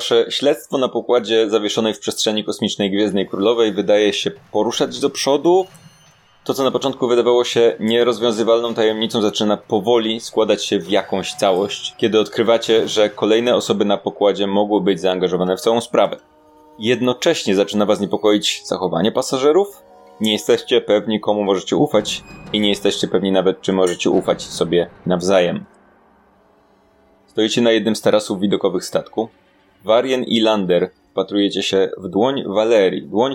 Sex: male